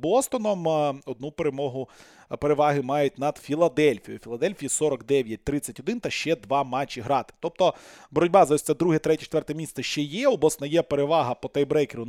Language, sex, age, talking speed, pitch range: Ukrainian, male, 20-39, 160 wpm, 130-160 Hz